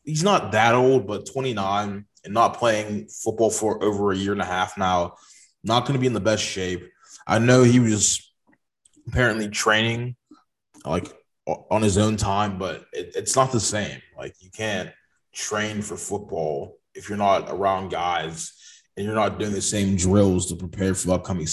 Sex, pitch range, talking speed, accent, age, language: male, 95-110 Hz, 180 wpm, American, 20-39, English